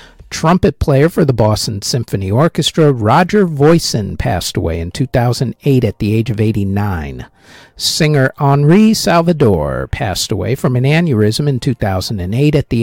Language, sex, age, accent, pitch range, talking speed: English, male, 50-69, American, 110-160 Hz, 140 wpm